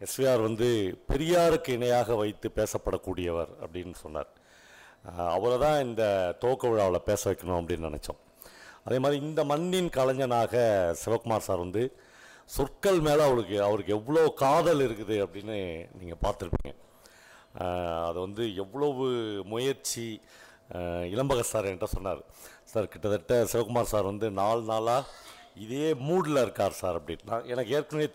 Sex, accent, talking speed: male, native, 120 wpm